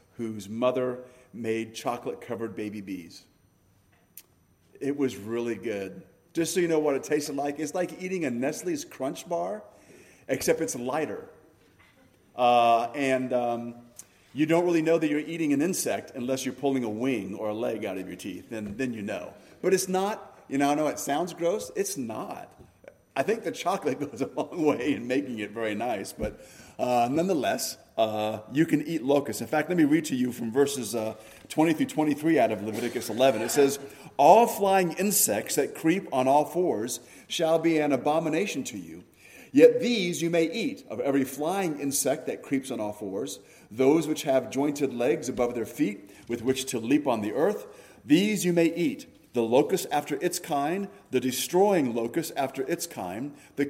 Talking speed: 185 wpm